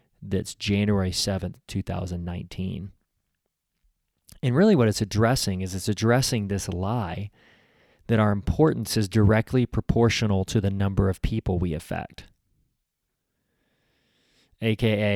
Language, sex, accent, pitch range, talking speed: English, male, American, 95-115 Hz, 110 wpm